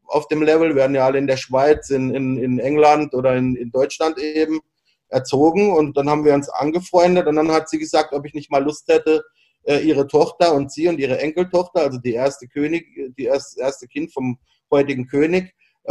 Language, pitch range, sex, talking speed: German, 145-160 Hz, male, 200 wpm